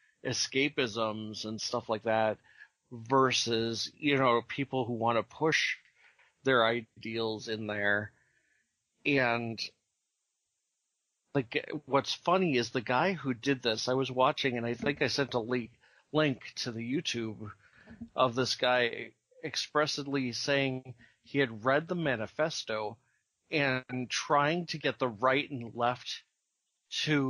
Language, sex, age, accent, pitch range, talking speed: English, male, 40-59, American, 115-140 Hz, 130 wpm